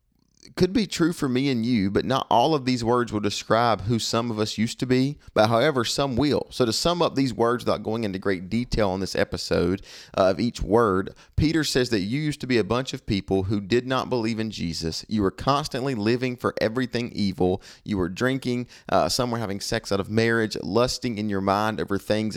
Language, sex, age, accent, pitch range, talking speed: English, male, 30-49, American, 100-125 Hz, 225 wpm